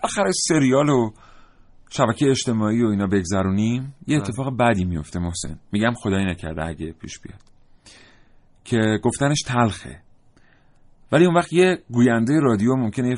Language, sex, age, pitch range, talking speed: Persian, male, 40-59, 95-135 Hz, 140 wpm